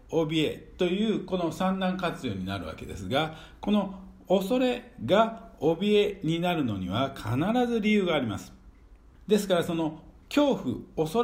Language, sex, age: Japanese, male, 50-69